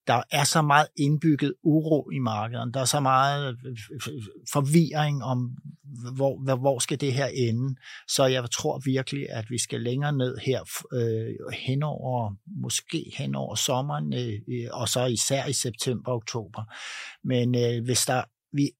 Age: 60-79